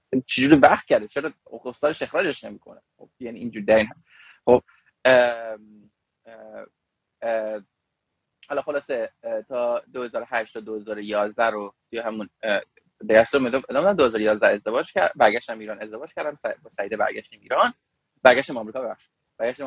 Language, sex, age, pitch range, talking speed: Persian, male, 20-39, 110-150 Hz, 120 wpm